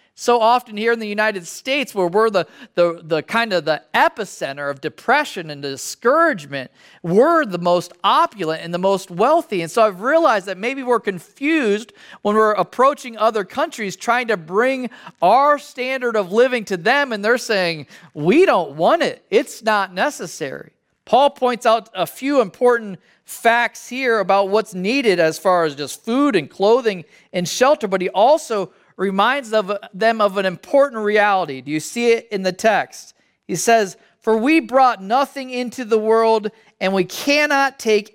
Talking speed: 170 wpm